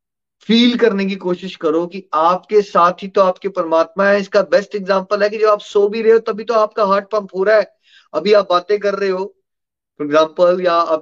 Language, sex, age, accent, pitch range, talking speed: Hindi, male, 30-49, native, 180-245 Hz, 230 wpm